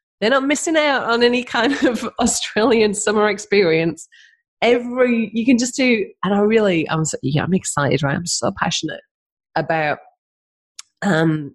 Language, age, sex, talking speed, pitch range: English, 30-49, female, 155 wpm, 150-230 Hz